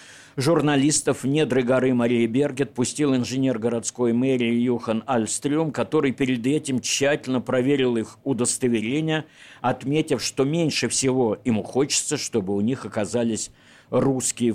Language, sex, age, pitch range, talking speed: Russian, male, 50-69, 115-140 Hz, 125 wpm